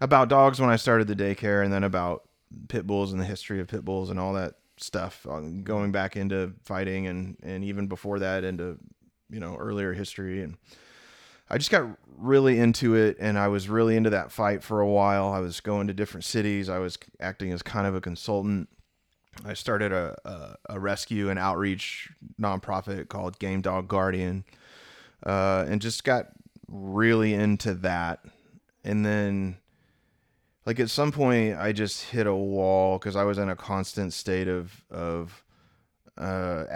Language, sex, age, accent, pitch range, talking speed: English, male, 20-39, American, 90-105 Hz, 175 wpm